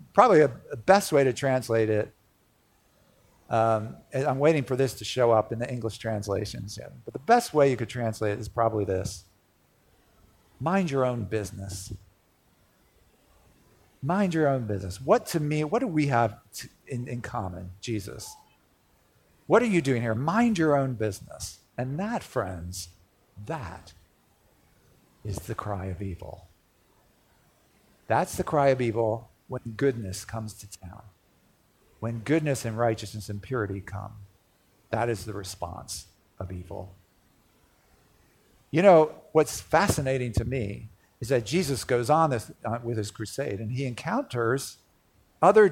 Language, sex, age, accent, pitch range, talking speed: English, male, 50-69, American, 100-145 Hz, 145 wpm